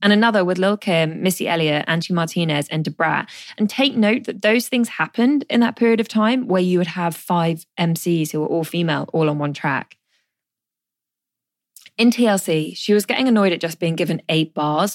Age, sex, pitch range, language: 20-39, female, 160-215 Hz, English